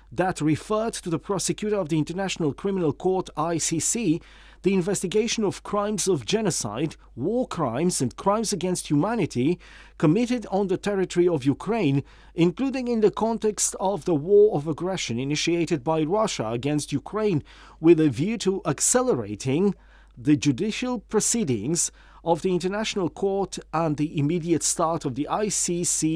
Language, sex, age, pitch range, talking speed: English, male, 40-59, 150-205 Hz, 140 wpm